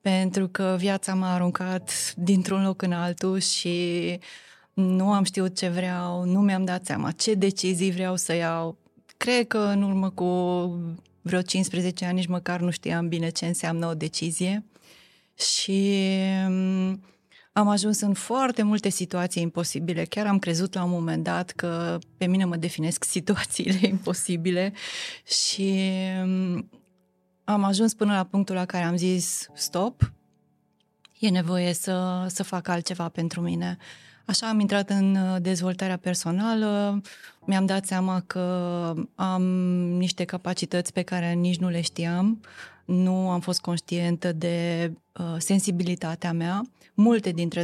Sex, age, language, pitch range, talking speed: female, 20-39, Romanian, 175-190 Hz, 140 wpm